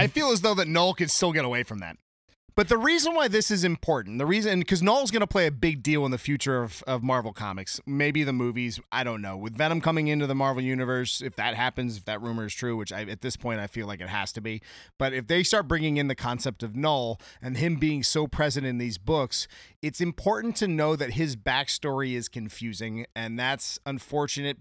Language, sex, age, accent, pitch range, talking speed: English, male, 30-49, American, 120-165 Hz, 240 wpm